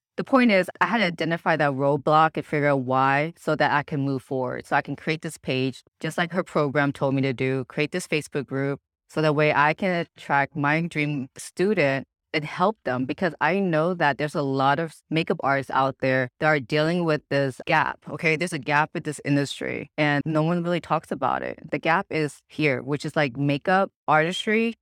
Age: 20-39